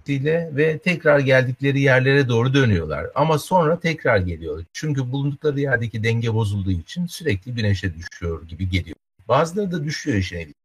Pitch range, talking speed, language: 100-145 Hz, 140 wpm, Turkish